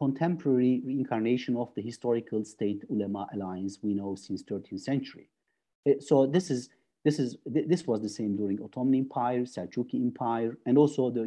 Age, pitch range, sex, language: 50-69, 110-145 Hz, male, Turkish